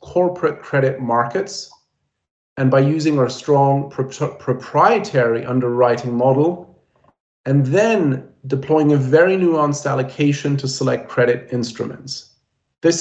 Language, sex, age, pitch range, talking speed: Czech, male, 40-59, 125-155 Hz, 105 wpm